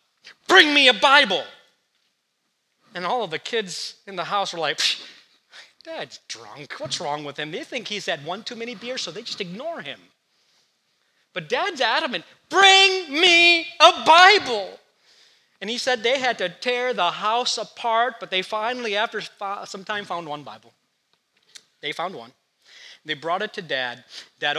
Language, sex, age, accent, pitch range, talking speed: English, male, 40-59, American, 150-215 Hz, 165 wpm